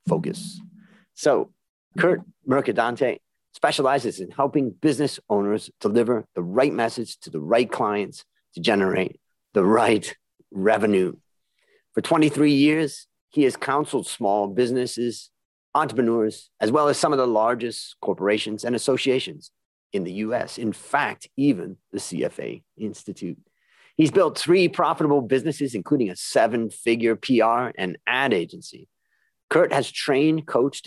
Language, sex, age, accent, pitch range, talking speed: English, male, 40-59, American, 115-160 Hz, 130 wpm